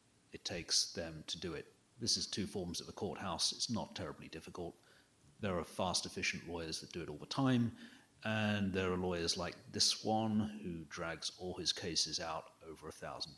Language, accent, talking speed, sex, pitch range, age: English, British, 195 wpm, male, 85-105 Hz, 40-59